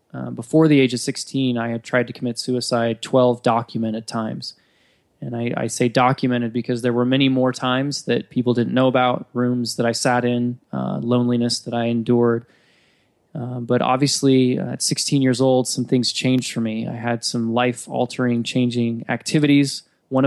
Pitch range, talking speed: 120-130 Hz, 180 wpm